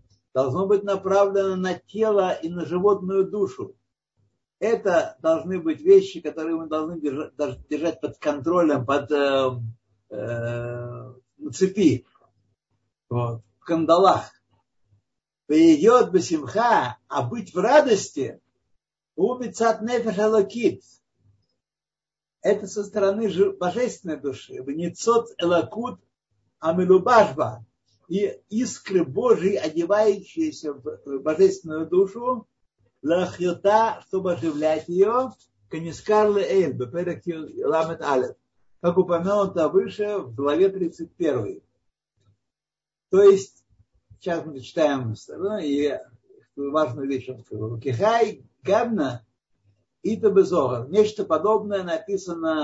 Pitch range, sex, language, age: 130-205 Hz, male, Russian, 60-79